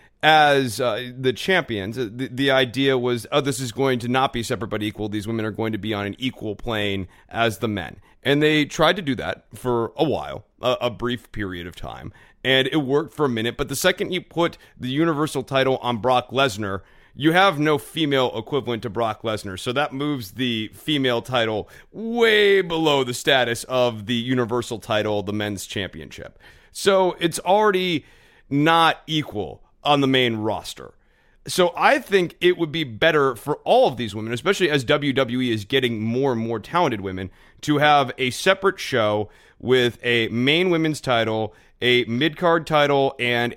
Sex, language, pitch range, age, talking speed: male, English, 115-150 Hz, 30-49, 185 wpm